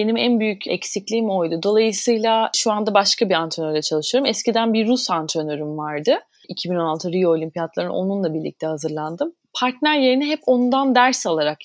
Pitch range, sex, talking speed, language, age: 160-225 Hz, female, 150 wpm, Turkish, 30-49